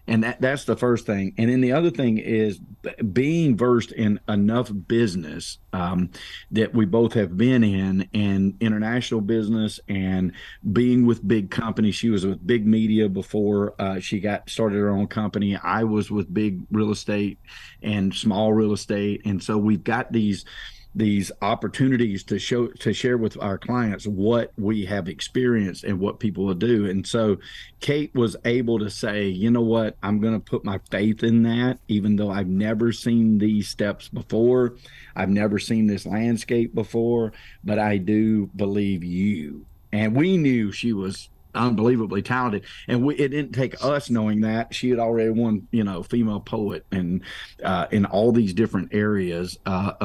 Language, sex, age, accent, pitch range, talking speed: English, male, 50-69, American, 100-115 Hz, 175 wpm